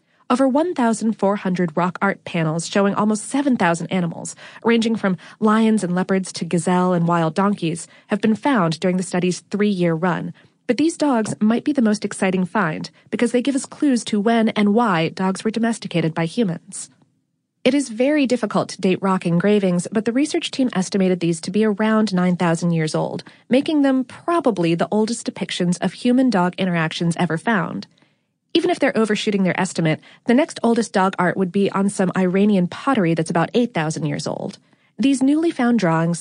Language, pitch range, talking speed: English, 180-230 Hz, 175 wpm